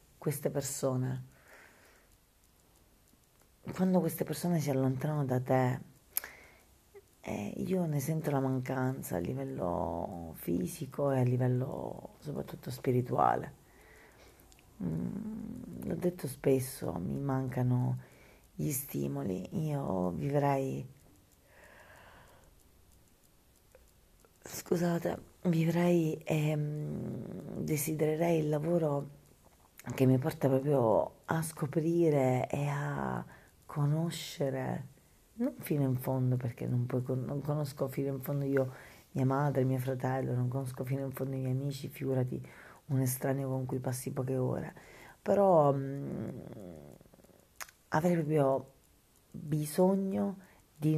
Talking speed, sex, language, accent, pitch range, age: 100 wpm, female, Italian, native, 130-155 Hz, 40-59